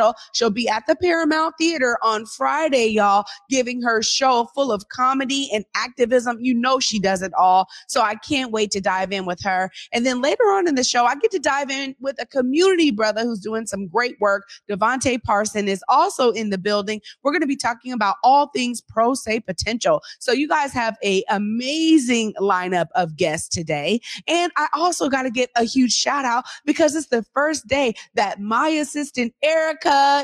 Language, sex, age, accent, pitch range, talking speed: English, female, 30-49, American, 200-275 Hz, 195 wpm